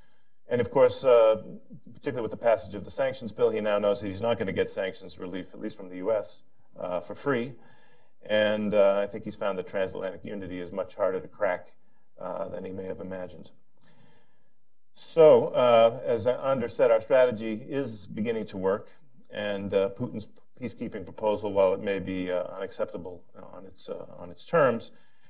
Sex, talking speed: male, 185 wpm